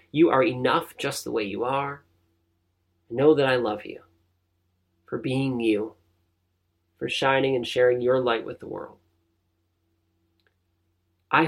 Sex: male